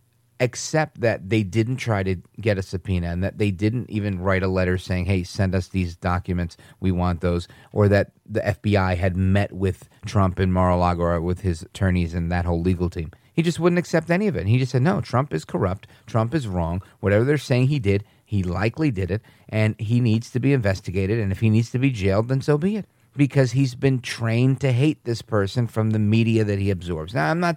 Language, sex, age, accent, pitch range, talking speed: English, male, 30-49, American, 100-130 Hz, 230 wpm